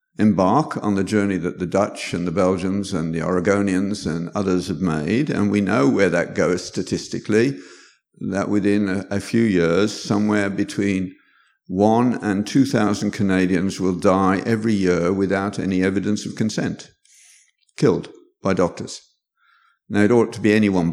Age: 50-69